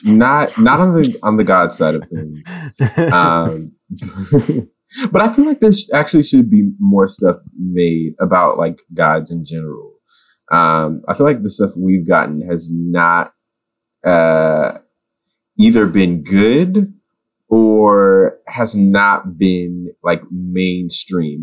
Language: English